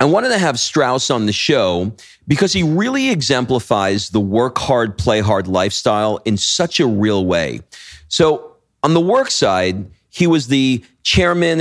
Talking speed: 165 wpm